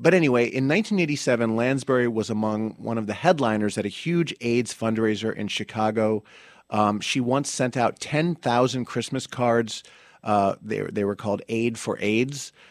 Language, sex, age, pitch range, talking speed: English, male, 30-49, 105-125 Hz, 160 wpm